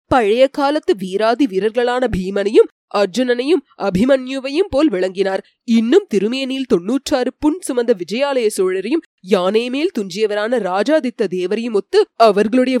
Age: 20-39